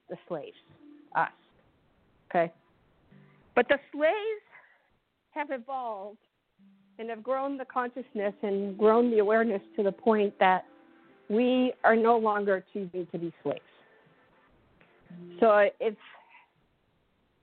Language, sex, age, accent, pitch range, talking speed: English, female, 50-69, American, 195-250 Hz, 110 wpm